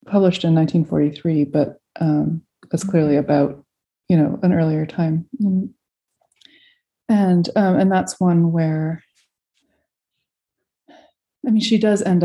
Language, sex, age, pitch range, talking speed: English, female, 30-49, 160-210 Hz, 120 wpm